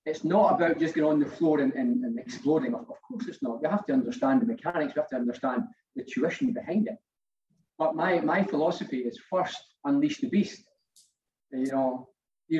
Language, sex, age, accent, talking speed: English, male, 30-49, British, 200 wpm